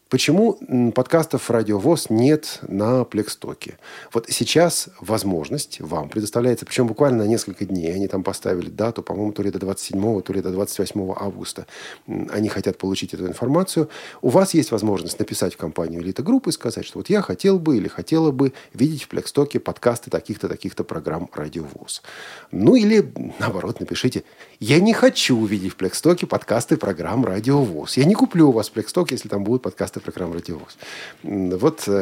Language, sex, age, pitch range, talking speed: Russian, male, 40-59, 95-140 Hz, 165 wpm